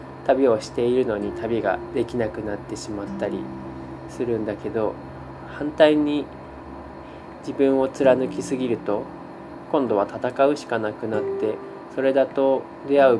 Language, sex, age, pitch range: Japanese, male, 20-39, 105-125 Hz